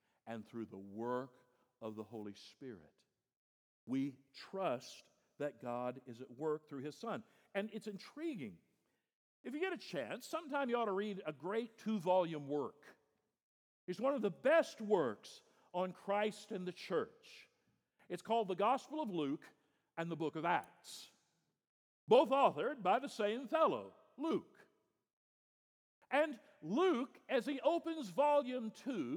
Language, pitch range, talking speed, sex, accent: English, 160-270 Hz, 145 wpm, male, American